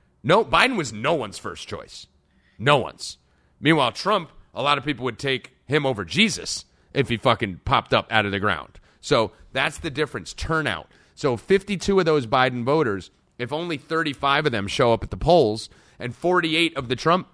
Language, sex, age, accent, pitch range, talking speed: English, male, 30-49, American, 105-140 Hz, 190 wpm